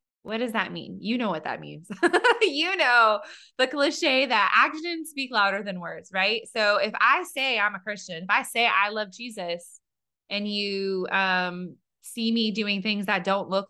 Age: 20-39